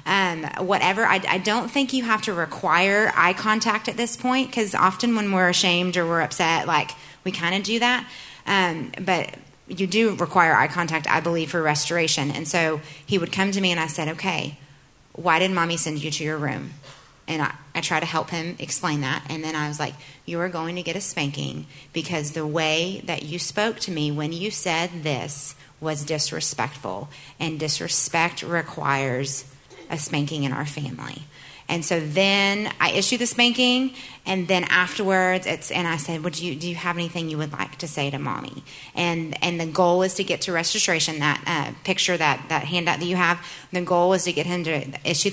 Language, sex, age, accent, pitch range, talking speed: English, female, 30-49, American, 150-180 Hz, 205 wpm